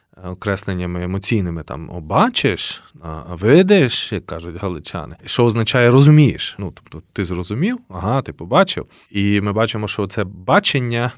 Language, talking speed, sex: Ukrainian, 140 wpm, male